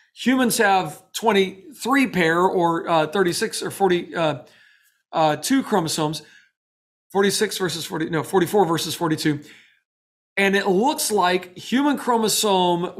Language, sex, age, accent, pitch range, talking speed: English, male, 40-59, American, 165-200 Hz, 115 wpm